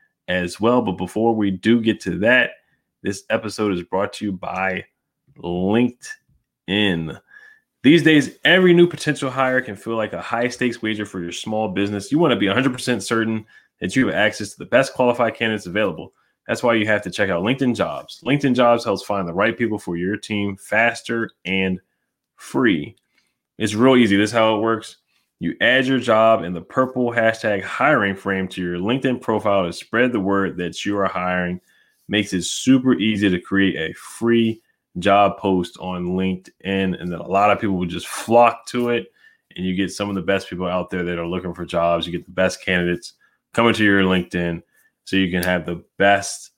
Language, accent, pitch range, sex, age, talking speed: English, American, 90-115 Hz, male, 20-39, 200 wpm